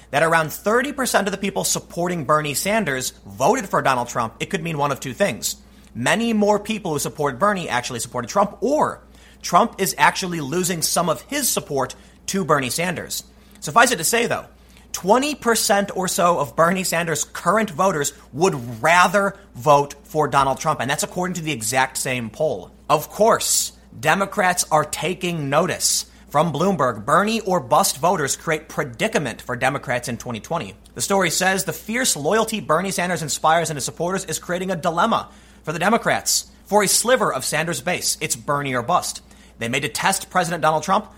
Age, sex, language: 30-49, male, English